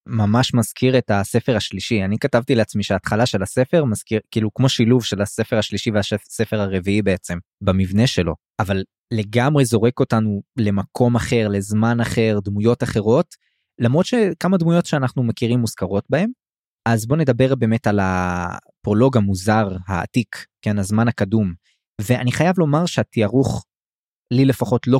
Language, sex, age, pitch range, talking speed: Hebrew, male, 20-39, 105-125 Hz, 140 wpm